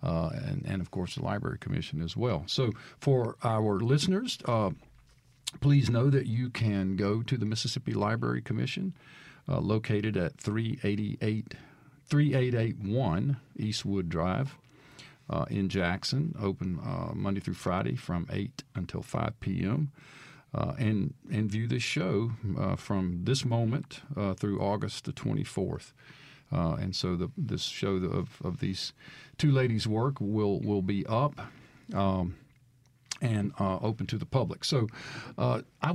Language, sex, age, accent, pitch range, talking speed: English, male, 50-69, American, 100-140 Hz, 145 wpm